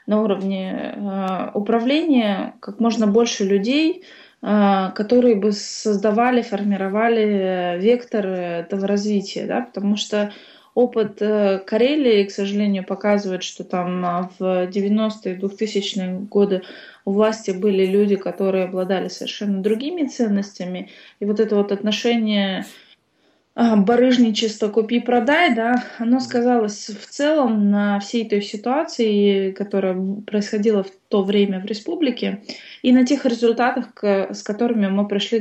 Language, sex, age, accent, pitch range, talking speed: Russian, female, 20-39, native, 195-230 Hz, 120 wpm